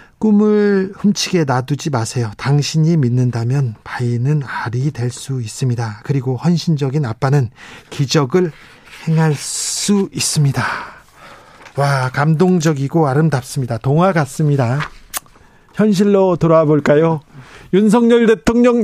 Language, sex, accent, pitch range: Korean, male, native, 130-180 Hz